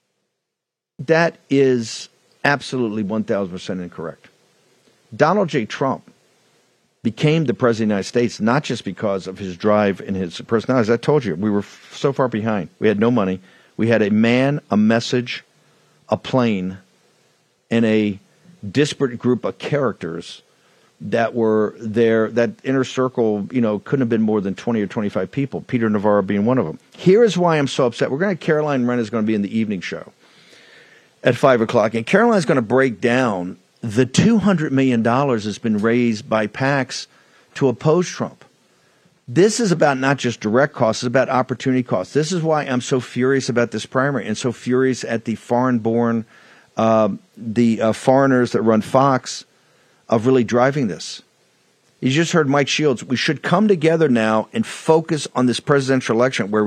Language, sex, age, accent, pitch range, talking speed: English, male, 50-69, American, 110-140 Hz, 175 wpm